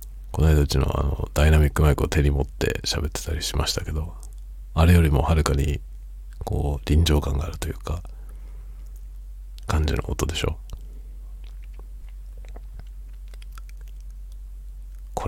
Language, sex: Japanese, male